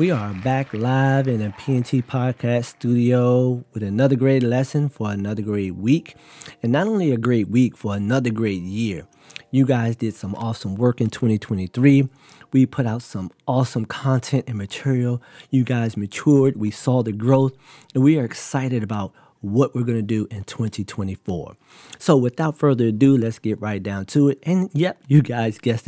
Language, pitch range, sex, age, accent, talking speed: English, 110-135 Hz, male, 40-59, American, 180 wpm